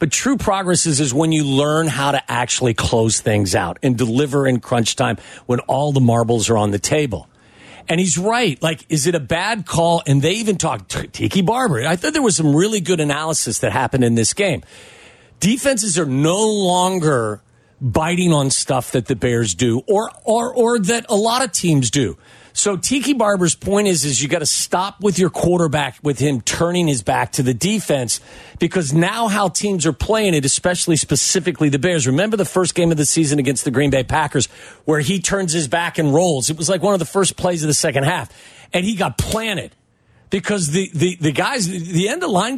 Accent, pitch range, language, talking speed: American, 140-195 Hz, English, 210 wpm